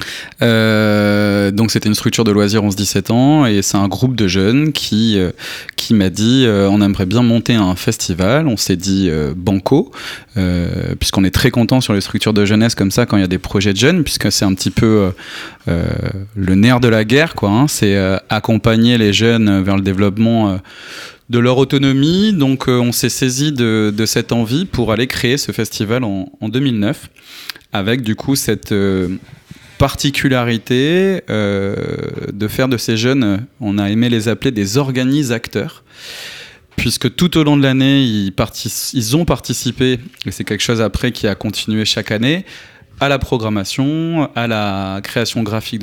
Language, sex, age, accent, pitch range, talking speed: French, male, 20-39, French, 100-130 Hz, 185 wpm